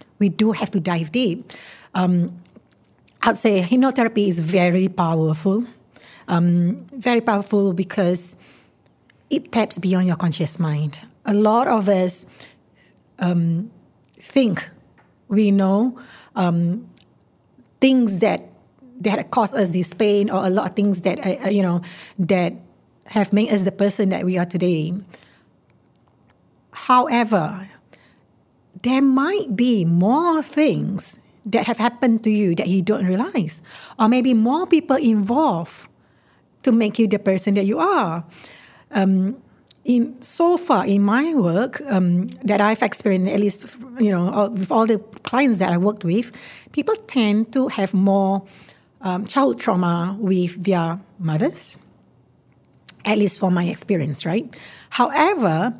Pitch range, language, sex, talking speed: 185-240 Hz, English, female, 140 wpm